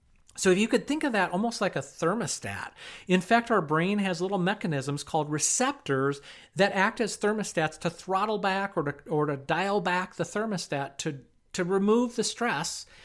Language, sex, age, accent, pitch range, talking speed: English, male, 40-59, American, 155-215 Hz, 180 wpm